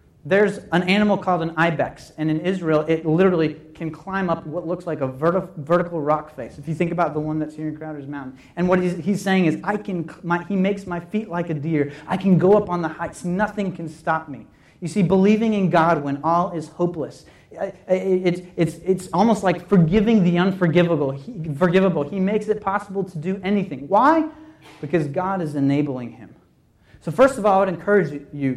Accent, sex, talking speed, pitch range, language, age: American, male, 210 wpm, 150-195 Hz, English, 30-49